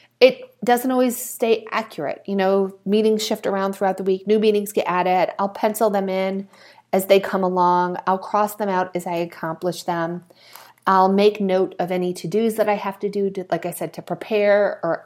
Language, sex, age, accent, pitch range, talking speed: English, female, 30-49, American, 170-210 Hz, 200 wpm